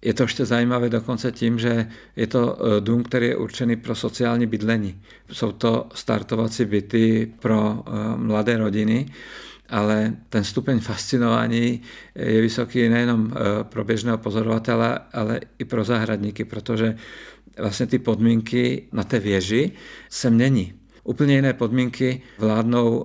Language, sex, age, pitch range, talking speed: Czech, male, 50-69, 110-120 Hz, 130 wpm